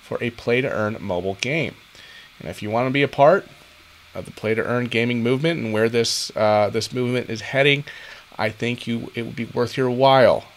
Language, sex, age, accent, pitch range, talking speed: English, male, 30-49, American, 100-130 Hz, 200 wpm